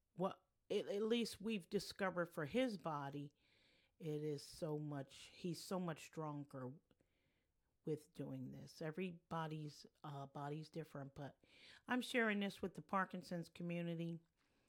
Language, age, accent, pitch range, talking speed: English, 50-69, American, 145-175 Hz, 125 wpm